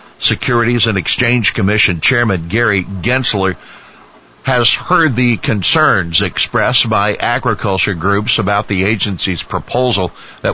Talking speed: 115 wpm